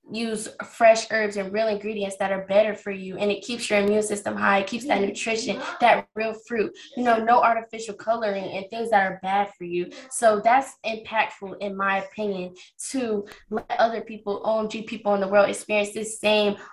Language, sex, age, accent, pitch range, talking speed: English, female, 10-29, American, 200-225 Hz, 195 wpm